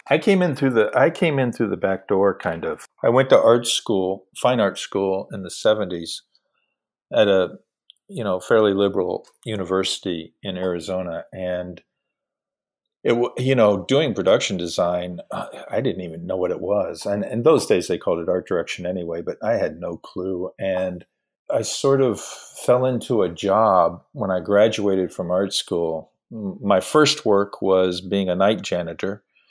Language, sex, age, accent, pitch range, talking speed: English, male, 50-69, American, 95-115 Hz, 175 wpm